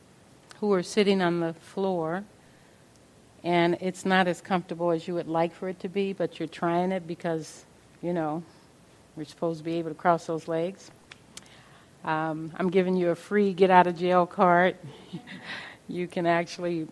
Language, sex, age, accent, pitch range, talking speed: English, female, 50-69, American, 160-175 Hz, 175 wpm